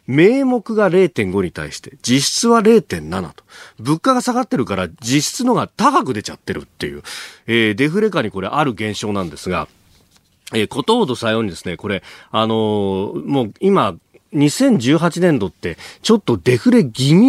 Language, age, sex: Japanese, 40-59, male